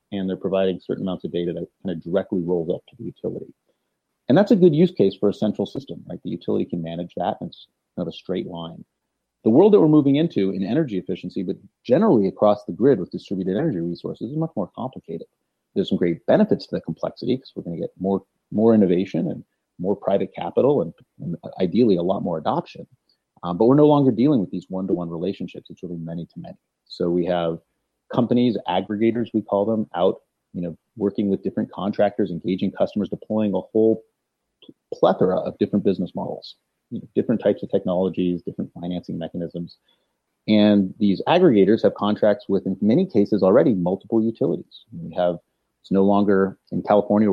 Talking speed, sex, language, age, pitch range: 195 wpm, male, English, 30-49, 90-105 Hz